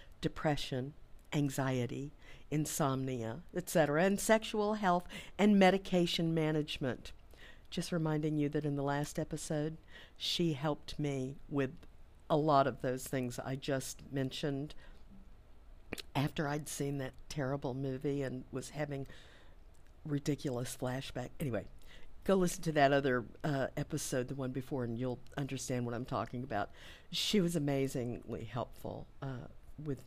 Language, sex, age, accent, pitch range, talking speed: English, female, 50-69, American, 130-180 Hz, 130 wpm